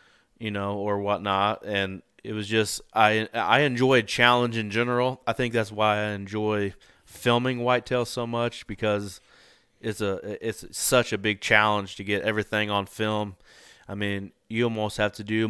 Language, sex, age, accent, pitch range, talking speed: English, male, 20-39, American, 100-110 Hz, 170 wpm